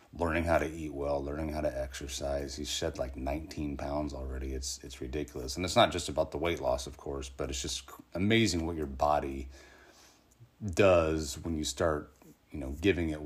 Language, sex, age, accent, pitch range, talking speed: English, male, 30-49, American, 70-80 Hz, 195 wpm